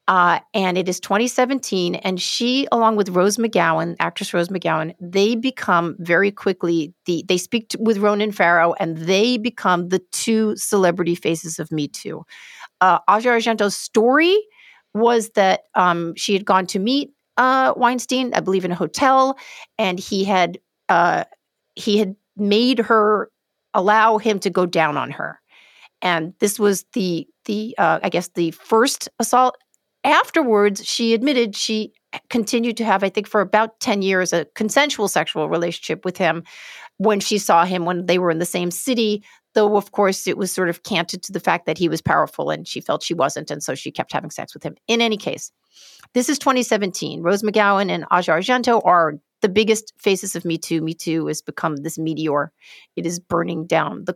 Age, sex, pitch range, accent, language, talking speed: 40-59, female, 175-230 Hz, American, English, 185 wpm